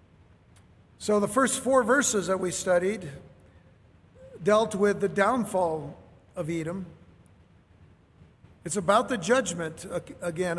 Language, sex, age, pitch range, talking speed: English, male, 50-69, 165-210 Hz, 110 wpm